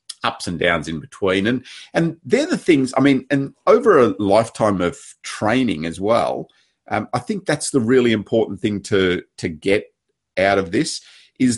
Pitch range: 95-125 Hz